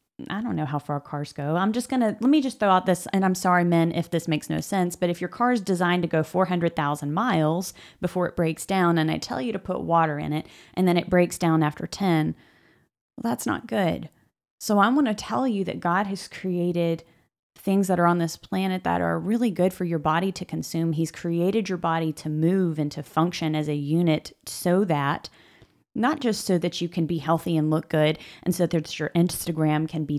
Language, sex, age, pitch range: English, female, 30-49, 155-190 Hz